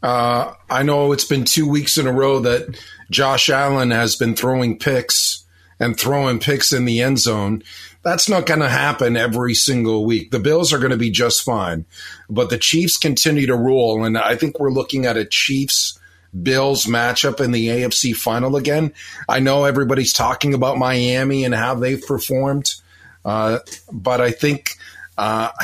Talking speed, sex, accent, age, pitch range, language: 175 wpm, male, American, 40-59, 110-140 Hz, English